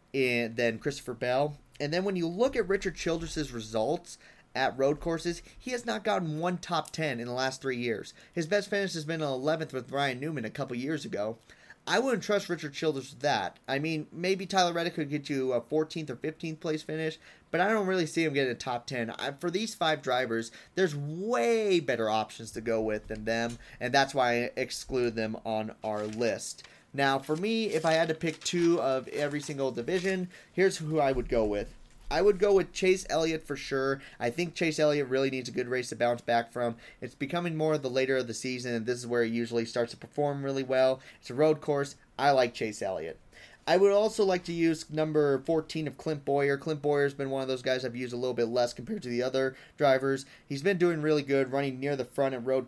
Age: 30-49